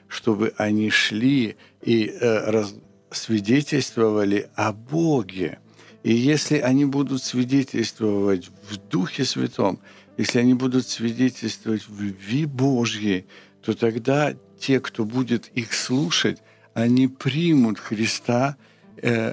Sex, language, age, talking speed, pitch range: male, Ukrainian, 60-79, 105 wpm, 110-135 Hz